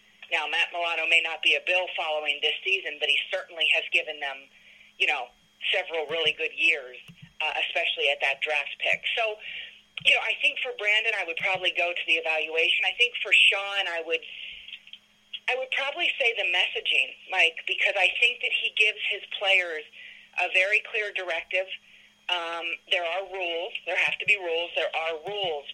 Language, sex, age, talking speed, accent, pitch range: English, female, 40-59, 185 wpm, American, 175-235 Hz